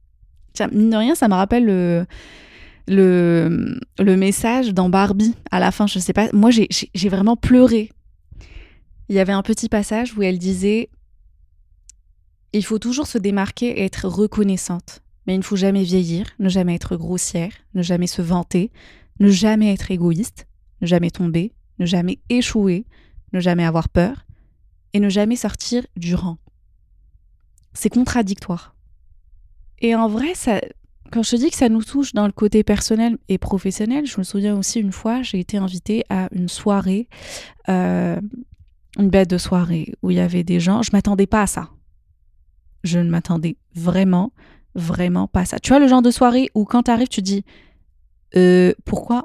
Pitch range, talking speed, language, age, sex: 175-220 Hz, 180 wpm, French, 20-39, female